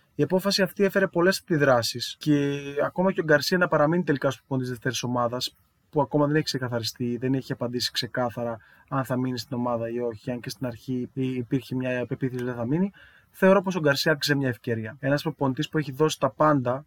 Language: Greek